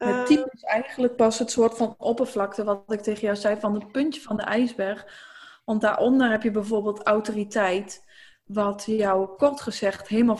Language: Dutch